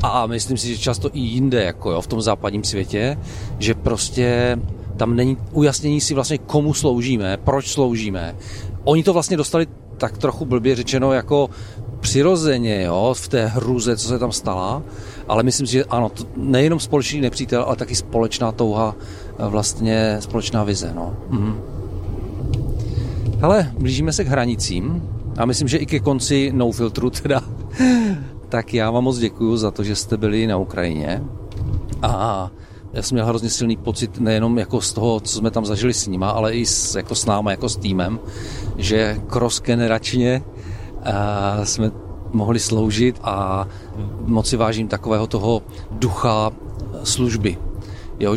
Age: 40-59